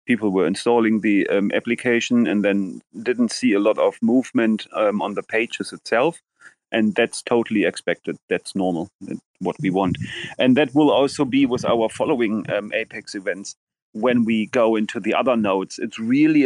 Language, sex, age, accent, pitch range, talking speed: English, male, 30-49, German, 105-125 Hz, 175 wpm